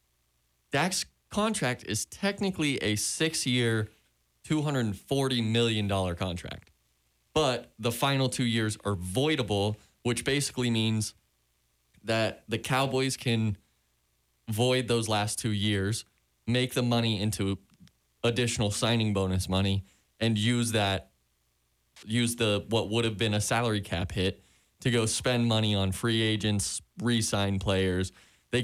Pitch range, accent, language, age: 95-120 Hz, American, English, 20-39